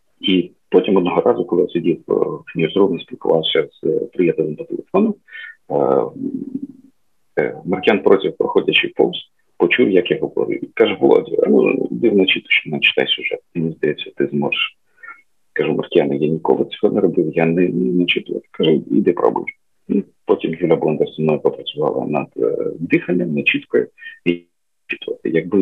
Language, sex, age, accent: Ukrainian, male, 40-59, native